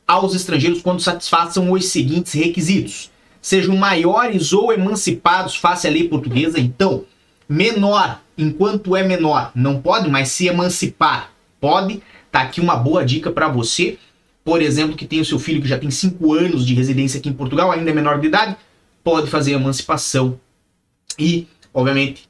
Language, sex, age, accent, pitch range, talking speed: Portuguese, male, 30-49, Brazilian, 150-195 Hz, 160 wpm